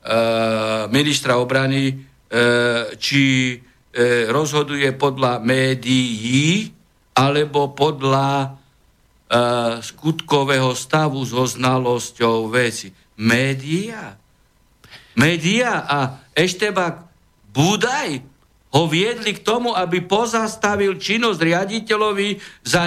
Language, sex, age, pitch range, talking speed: Slovak, male, 60-79, 125-180 Hz, 70 wpm